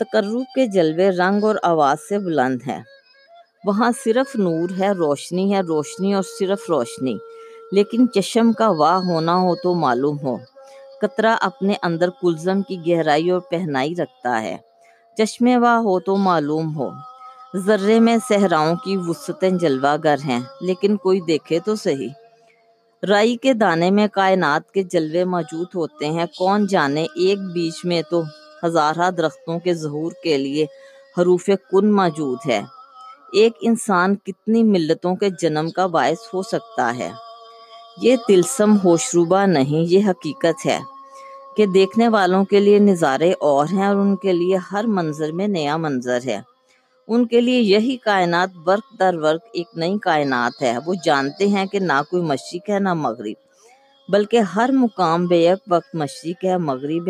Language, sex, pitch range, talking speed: Urdu, female, 165-220 Hz, 155 wpm